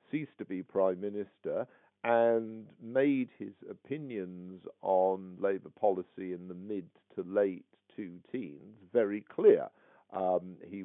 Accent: British